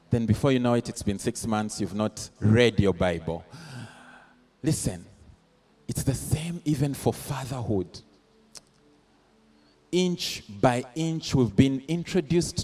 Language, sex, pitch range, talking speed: English, male, 110-160 Hz, 130 wpm